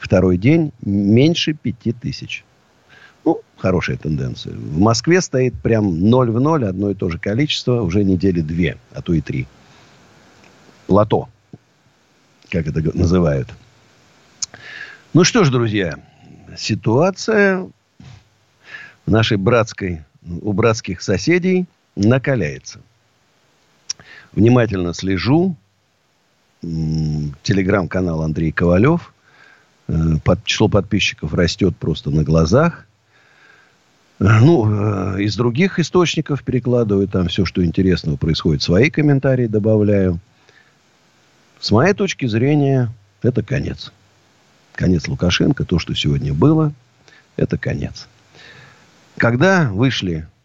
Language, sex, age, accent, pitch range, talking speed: Russian, male, 50-69, native, 95-140 Hz, 100 wpm